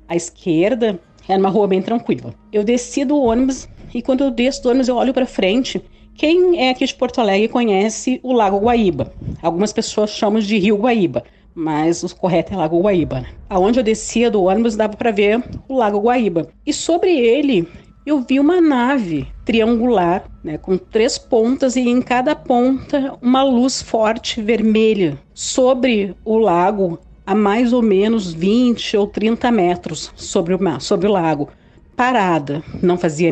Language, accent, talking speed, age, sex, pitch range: Portuguese, Brazilian, 165 wpm, 40-59, female, 190-250 Hz